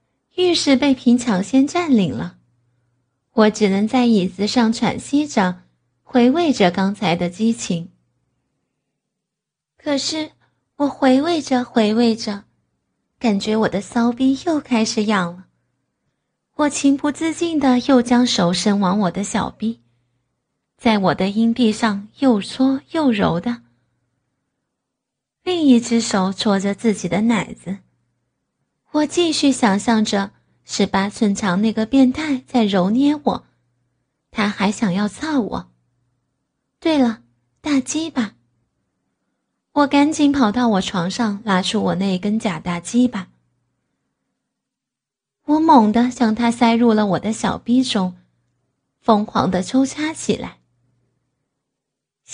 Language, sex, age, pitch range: Chinese, female, 20-39, 180-255 Hz